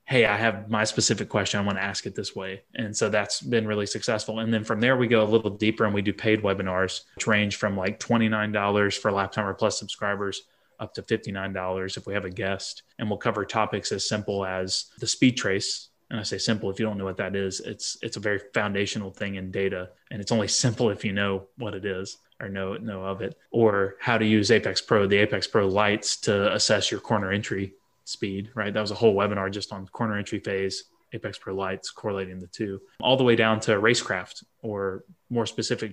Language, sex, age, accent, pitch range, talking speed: English, male, 20-39, American, 95-110 Hz, 225 wpm